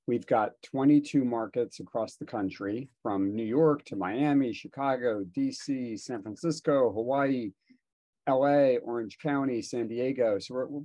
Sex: male